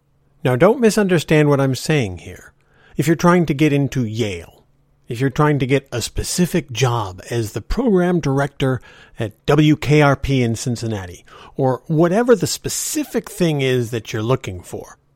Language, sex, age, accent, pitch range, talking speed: English, male, 50-69, American, 120-165 Hz, 160 wpm